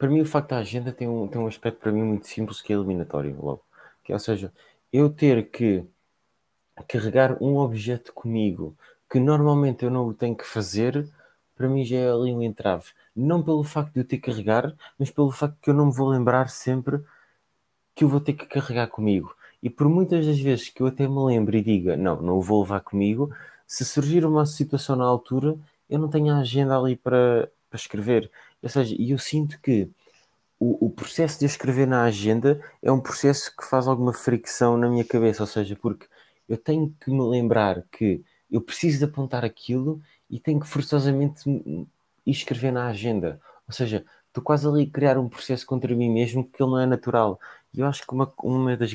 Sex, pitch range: male, 110-140 Hz